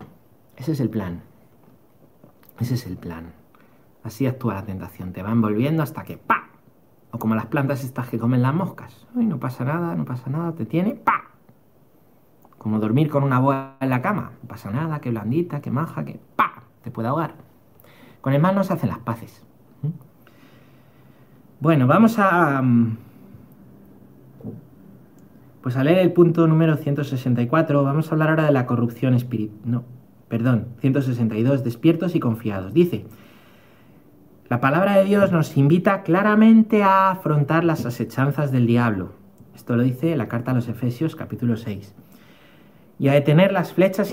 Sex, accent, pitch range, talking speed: male, Spanish, 115-160 Hz, 160 wpm